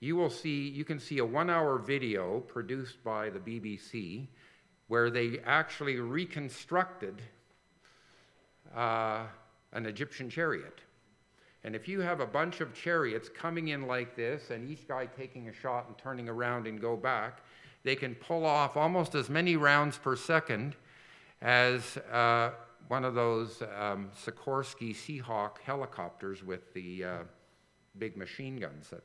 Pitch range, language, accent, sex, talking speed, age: 115-150 Hz, English, American, male, 145 wpm, 50-69